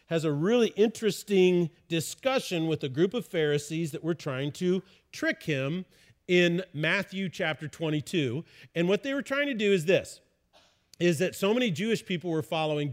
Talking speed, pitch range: 170 wpm, 155-195 Hz